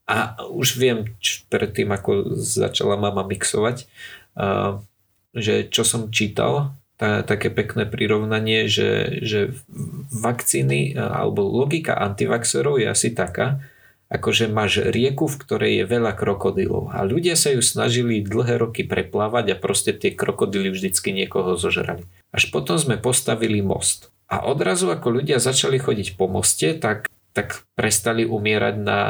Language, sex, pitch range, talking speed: Slovak, male, 100-120 Hz, 140 wpm